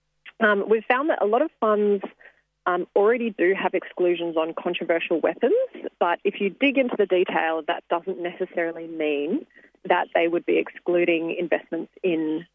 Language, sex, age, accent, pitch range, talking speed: English, female, 30-49, Australian, 165-235 Hz, 165 wpm